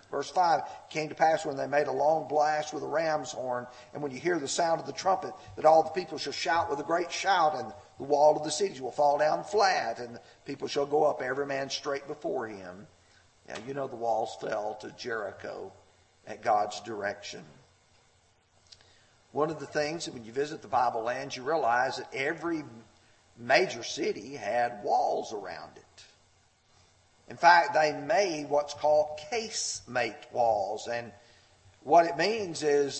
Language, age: English, 50-69